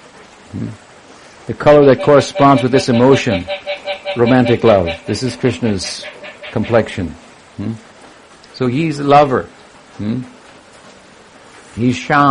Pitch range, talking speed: 120-160 Hz, 105 wpm